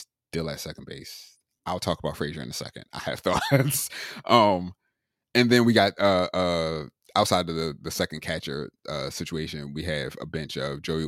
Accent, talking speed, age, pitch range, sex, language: American, 190 wpm, 30-49, 80-105 Hz, male, English